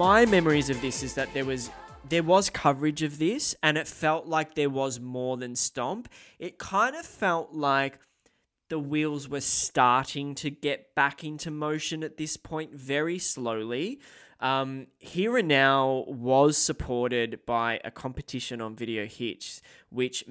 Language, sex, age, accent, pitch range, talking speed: English, male, 10-29, Australian, 115-140 Hz, 160 wpm